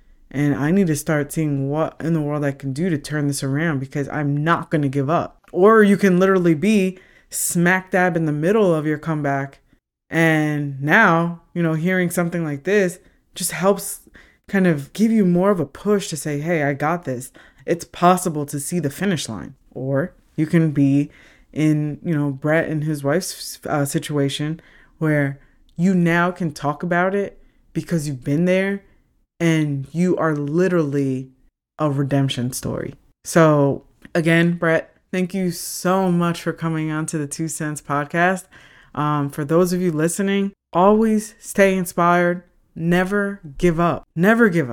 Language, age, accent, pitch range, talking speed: English, 20-39, American, 150-185 Hz, 170 wpm